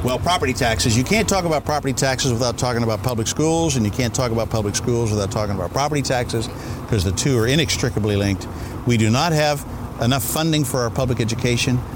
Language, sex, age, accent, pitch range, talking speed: English, male, 50-69, American, 110-135 Hz, 210 wpm